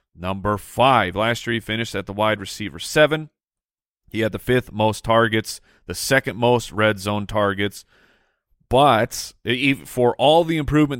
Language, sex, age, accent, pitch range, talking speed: English, male, 30-49, American, 105-135 Hz, 155 wpm